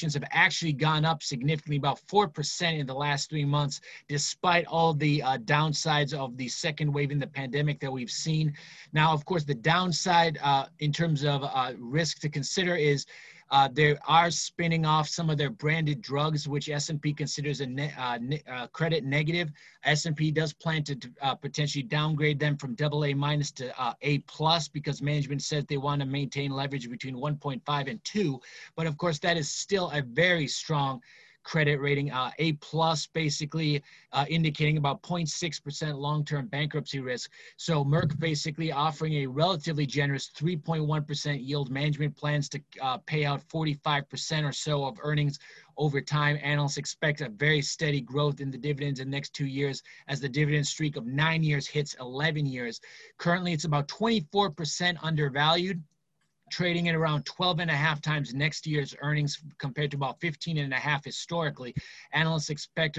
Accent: American